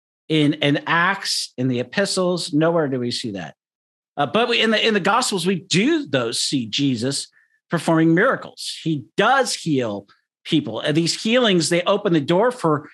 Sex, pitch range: male, 135-190 Hz